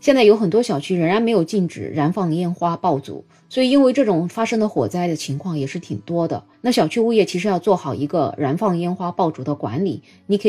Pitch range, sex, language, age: 155-215 Hz, female, Chinese, 20-39